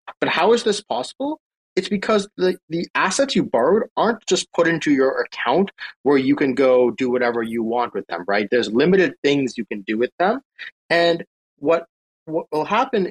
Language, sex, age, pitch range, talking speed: English, male, 30-49, 125-185 Hz, 190 wpm